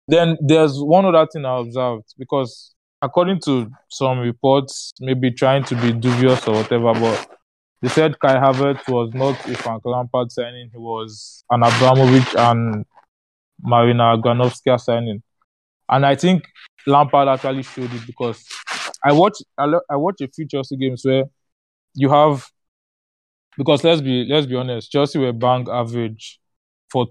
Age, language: 20-39, English